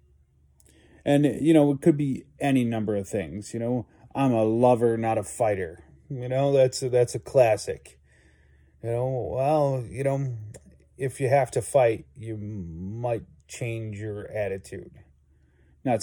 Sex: male